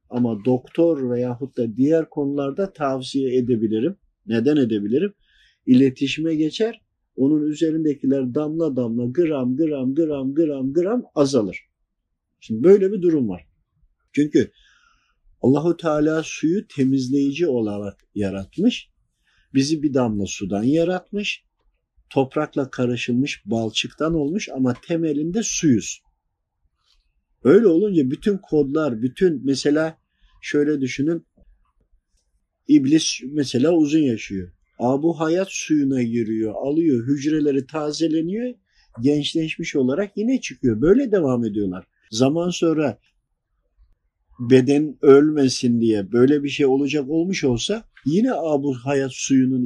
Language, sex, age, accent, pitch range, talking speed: Turkish, male, 50-69, native, 120-160 Hz, 105 wpm